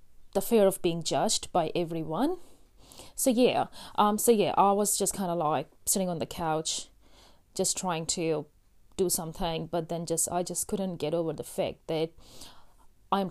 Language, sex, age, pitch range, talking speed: English, female, 30-49, 165-200 Hz, 175 wpm